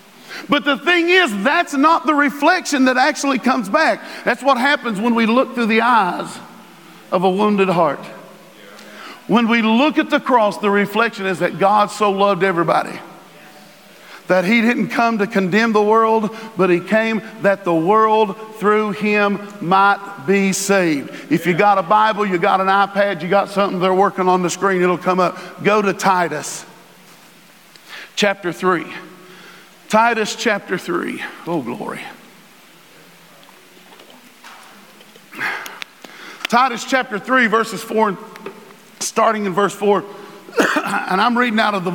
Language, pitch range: English, 195-245 Hz